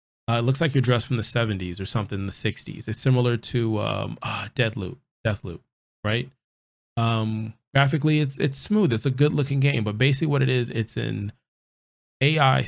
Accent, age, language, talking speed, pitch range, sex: American, 20-39, English, 200 wpm, 105-125 Hz, male